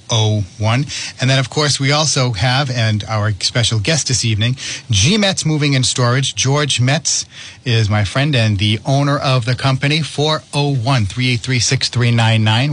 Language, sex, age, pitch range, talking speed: English, male, 40-59, 110-140 Hz, 135 wpm